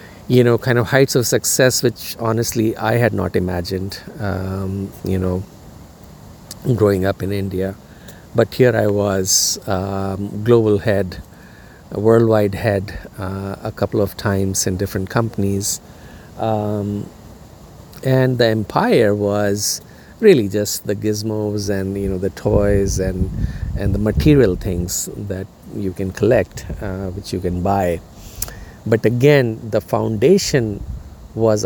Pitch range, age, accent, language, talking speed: 95-115 Hz, 50-69, Indian, English, 135 wpm